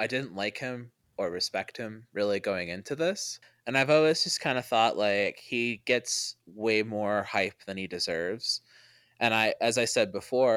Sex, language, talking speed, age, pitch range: male, English, 185 wpm, 20-39, 100-120 Hz